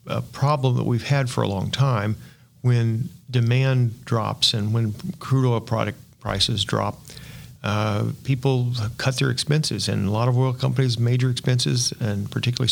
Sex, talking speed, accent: male, 160 wpm, American